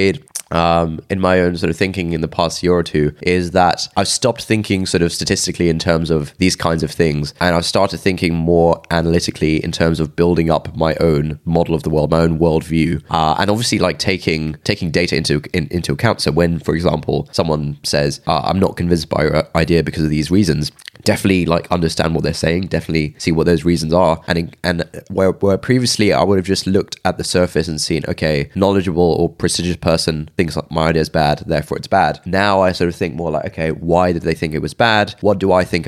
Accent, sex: British, male